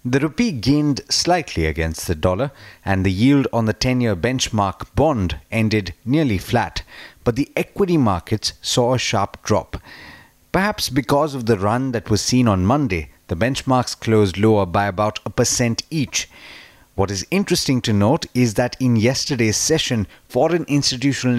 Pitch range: 105-135 Hz